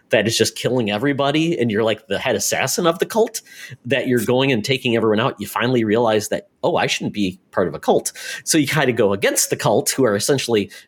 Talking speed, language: 245 wpm, English